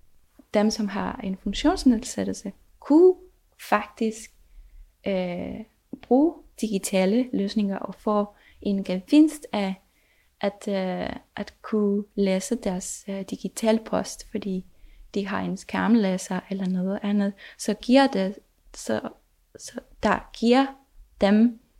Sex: female